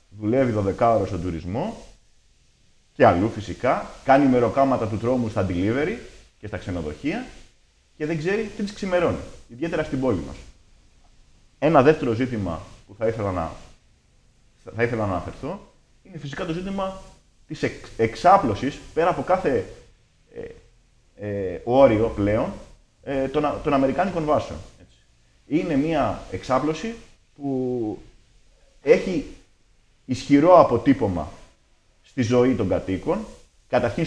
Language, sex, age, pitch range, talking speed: Greek, male, 30-49, 105-155 Hz, 120 wpm